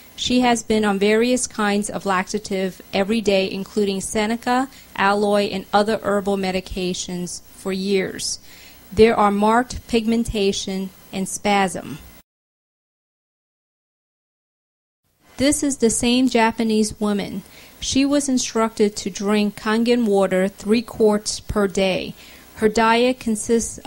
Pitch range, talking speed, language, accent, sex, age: 195-225 Hz, 115 wpm, English, American, female, 30-49